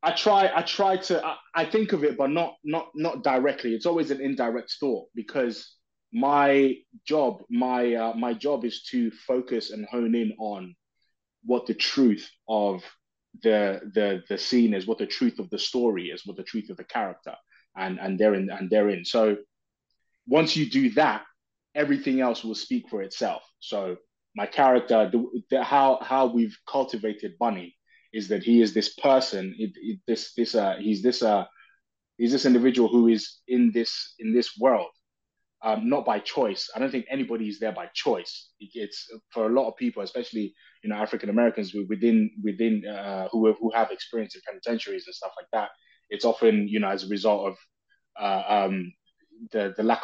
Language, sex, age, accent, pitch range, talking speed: English, male, 20-39, British, 110-145 Hz, 185 wpm